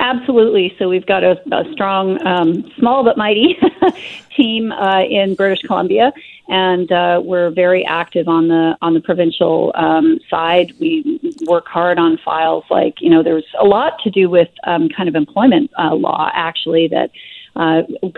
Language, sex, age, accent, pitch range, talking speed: English, female, 40-59, American, 165-195 Hz, 170 wpm